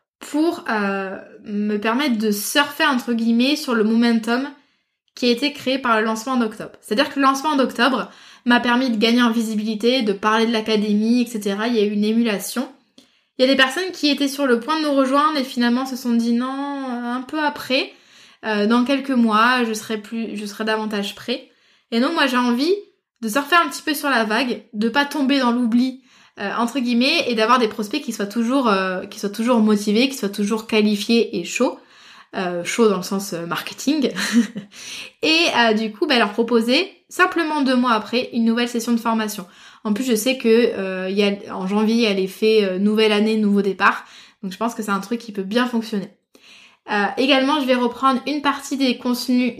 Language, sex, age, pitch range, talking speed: French, female, 20-39, 215-260 Hz, 210 wpm